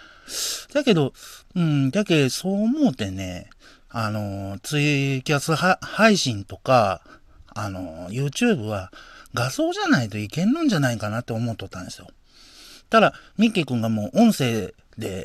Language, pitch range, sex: Japanese, 115-185 Hz, male